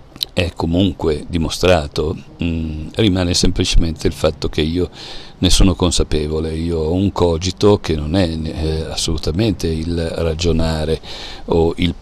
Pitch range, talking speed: 80-90 Hz, 130 wpm